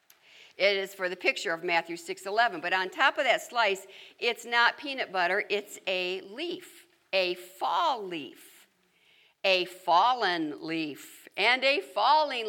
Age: 60-79